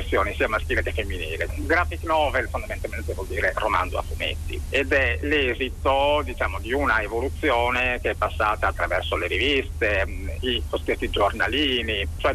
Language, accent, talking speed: Italian, native, 140 wpm